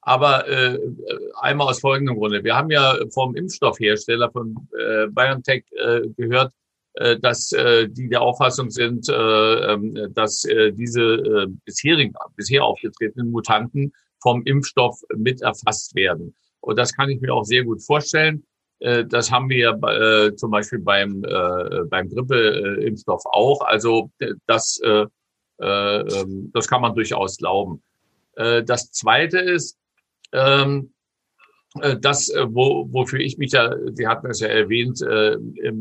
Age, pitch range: 50-69, 115-145 Hz